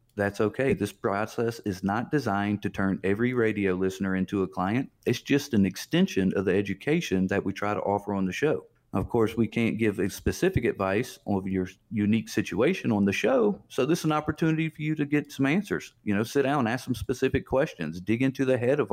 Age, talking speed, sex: 40-59, 220 wpm, male